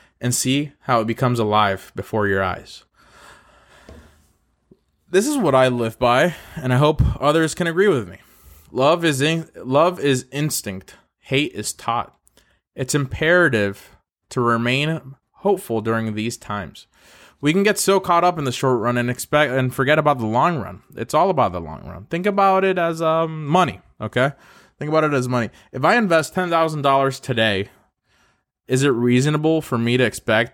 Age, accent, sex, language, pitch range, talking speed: 20-39, American, male, English, 110-150 Hz, 175 wpm